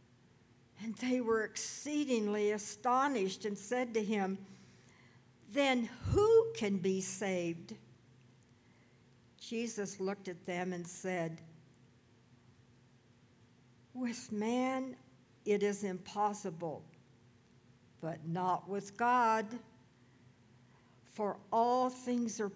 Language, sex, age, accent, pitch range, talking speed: English, female, 60-79, American, 155-210 Hz, 90 wpm